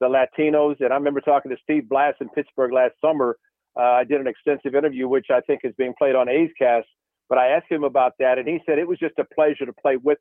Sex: male